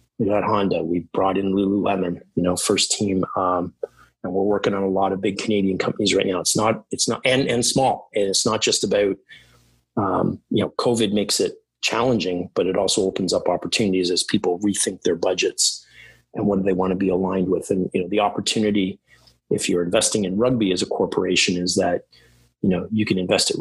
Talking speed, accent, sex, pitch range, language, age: 210 wpm, American, male, 95-110 Hz, English, 30-49